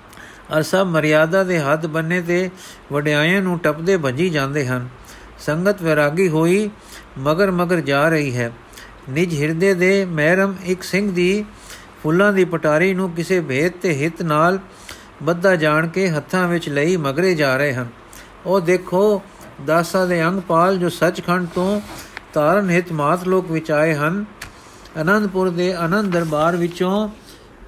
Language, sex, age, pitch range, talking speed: Punjabi, male, 50-69, 155-185 Hz, 145 wpm